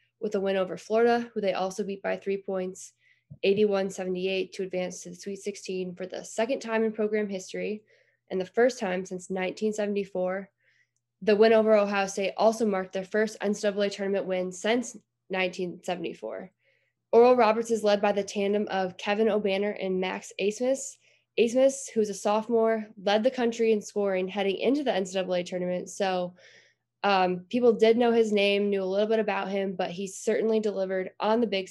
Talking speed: 175 wpm